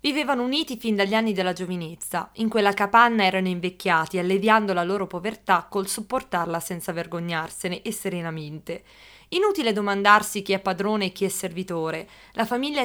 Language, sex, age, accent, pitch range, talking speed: Italian, female, 20-39, native, 180-230 Hz, 155 wpm